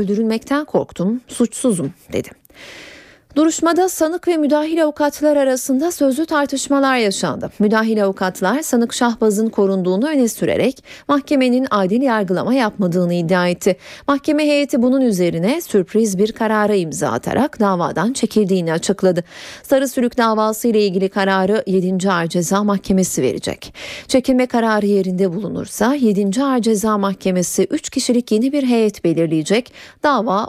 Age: 30-49